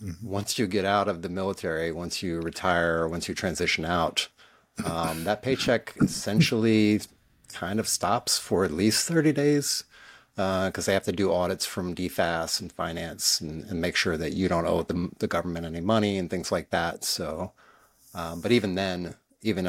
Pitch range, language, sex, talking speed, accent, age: 85-105 Hz, English, male, 185 wpm, American, 30-49